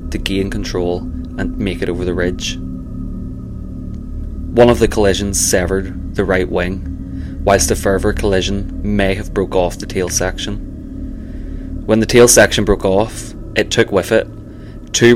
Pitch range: 90-105 Hz